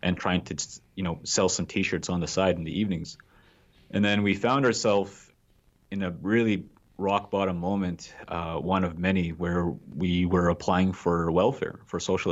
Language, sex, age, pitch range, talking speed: English, male, 30-49, 85-100 Hz, 180 wpm